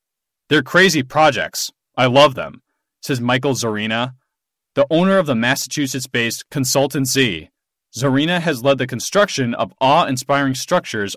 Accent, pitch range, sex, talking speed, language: American, 130-165 Hz, male, 135 wpm, English